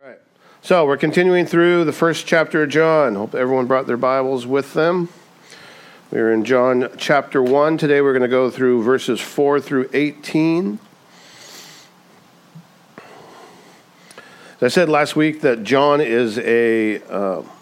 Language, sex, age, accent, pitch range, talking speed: English, male, 50-69, American, 120-150 Hz, 145 wpm